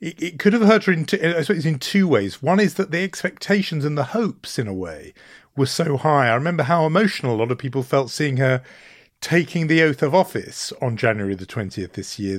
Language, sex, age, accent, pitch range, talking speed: English, male, 40-59, British, 110-160 Hz, 215 wpm